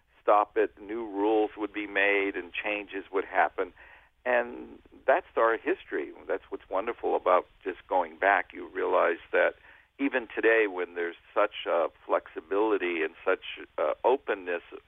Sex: male